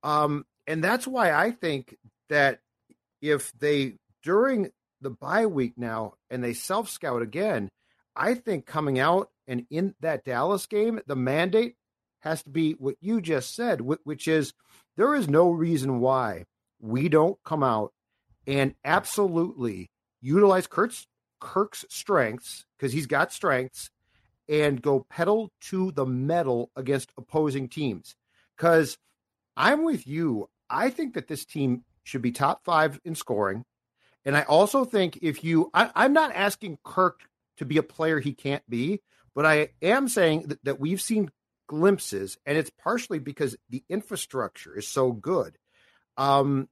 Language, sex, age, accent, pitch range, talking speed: English, male, 50-69, American, 130-180 Hz, 150 wpm